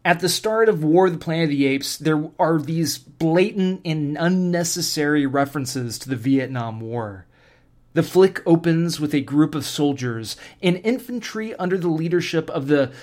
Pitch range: 135-180 Hz